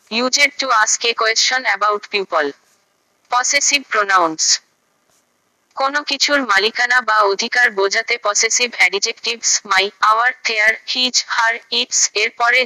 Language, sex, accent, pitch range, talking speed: Bengali, female, native, 210-250 Hz, 65 wpm